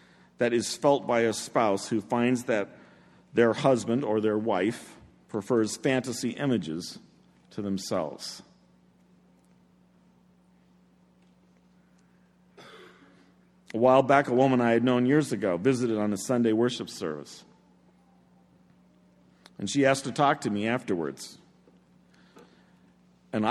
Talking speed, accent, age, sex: 110 wpm, American, 50-69, male